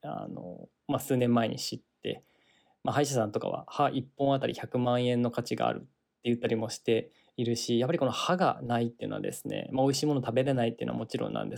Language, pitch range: Japanese, 120-140 Hz